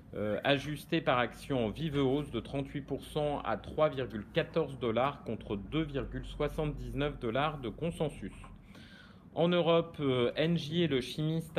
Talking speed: 125 wpm